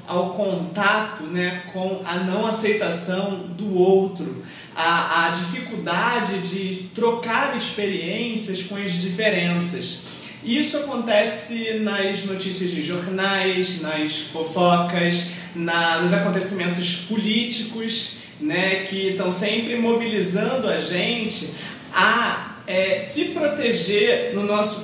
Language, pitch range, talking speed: Portuguese, 185-235 Hz, 105 wpm